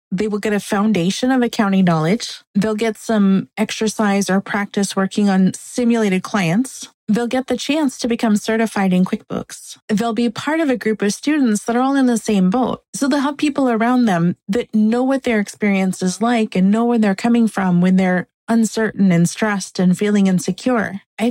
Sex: female